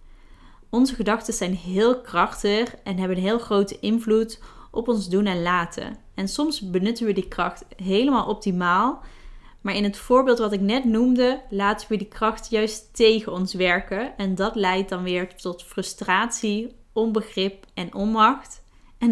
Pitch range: 185-225 Hz